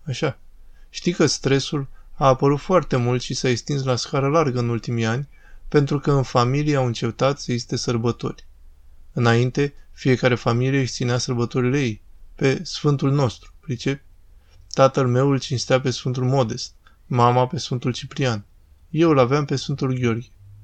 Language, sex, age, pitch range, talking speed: Romanian, male, 20-39, 115-140 Hz, 155 wpm